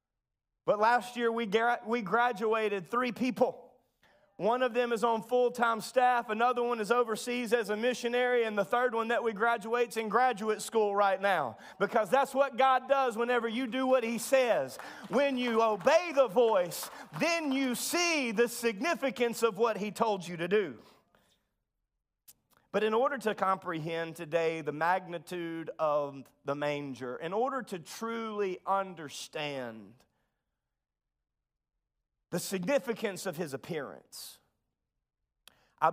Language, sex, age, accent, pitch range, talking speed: English, male, 30-49, American, 180-250 Hz, 145 wpm